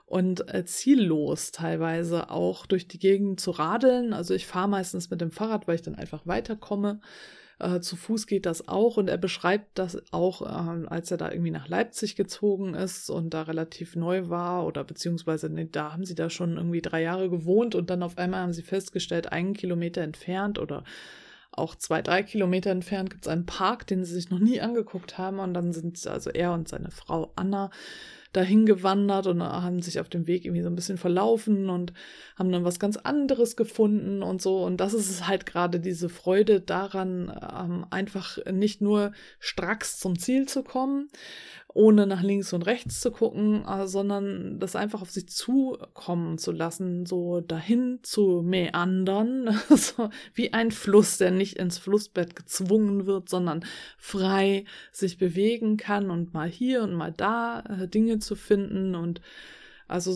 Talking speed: 175 wpm